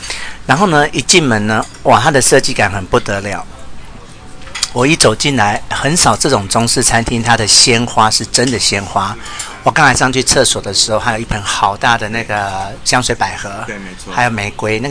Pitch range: 105-130 Hz